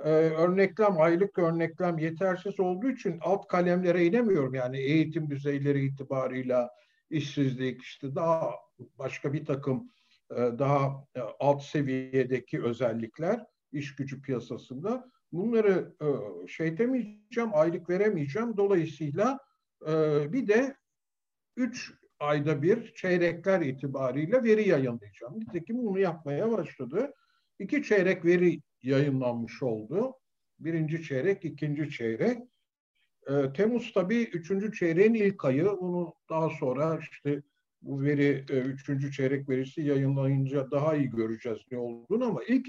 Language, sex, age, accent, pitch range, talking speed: Turkish, male, 60-79, native, 140-205 Hz, 110 wpm